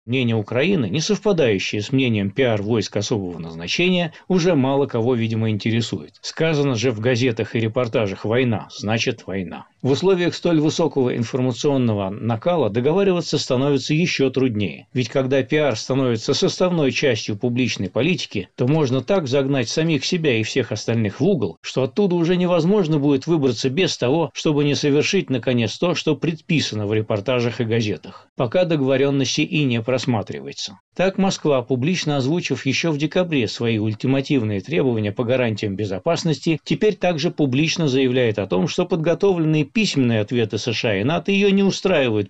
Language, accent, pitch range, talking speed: Russian, native, 115-160 Hz, 150 wpm